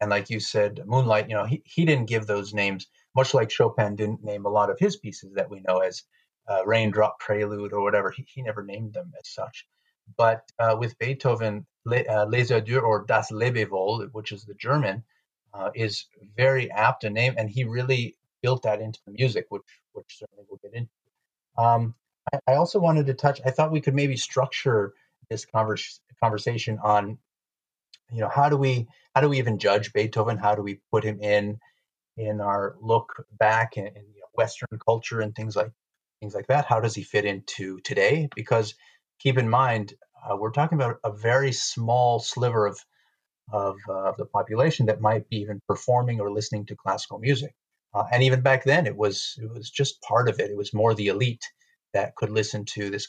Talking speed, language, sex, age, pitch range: 200 wpm, English, male, 30-49, 105-130 Hz